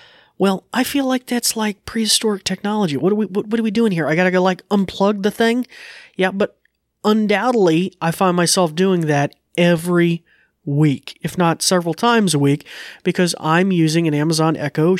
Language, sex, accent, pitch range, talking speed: English, male, American, 145-195 Hz, 190 wpm